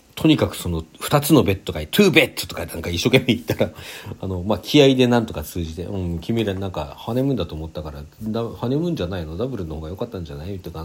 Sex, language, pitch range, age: male, Japanese, 85-120 Hz, 40-59